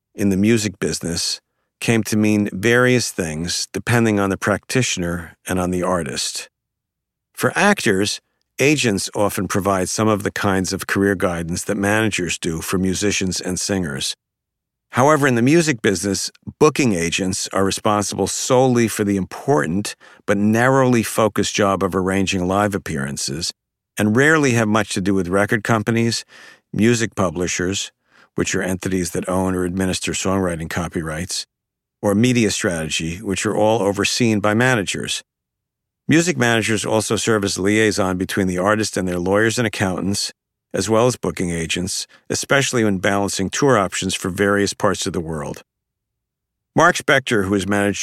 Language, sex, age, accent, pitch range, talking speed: English, male, 50-69, American, 95-110 Hz, 150 wpm